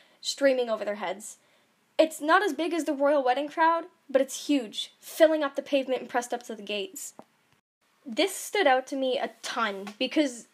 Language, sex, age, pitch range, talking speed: English, female, 10-29, 225-295 Hz, 195 wpm